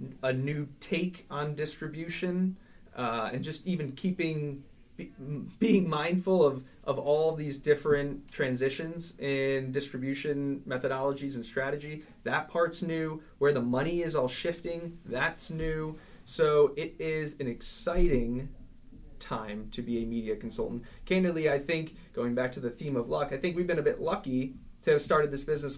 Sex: male